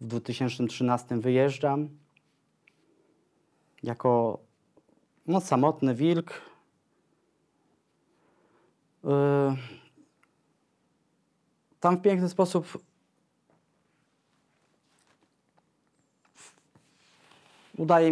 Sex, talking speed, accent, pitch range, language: male, 35 wpm, native, 120-145 Hz, Polish